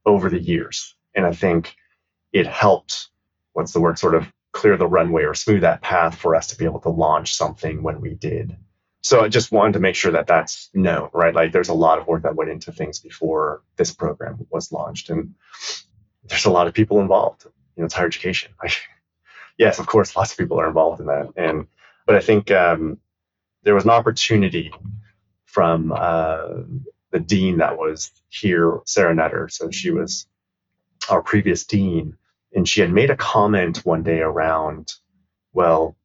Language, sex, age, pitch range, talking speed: English, male, 30-49, 85-105 Hz, 190 wpm